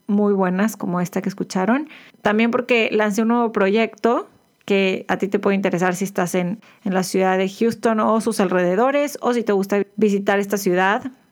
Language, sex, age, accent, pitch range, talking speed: Spanish, female, 30-49, Mexican, 195-230 Hz, 190 wpm